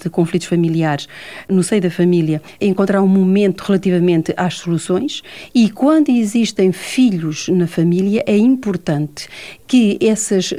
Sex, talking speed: female, 130 wpm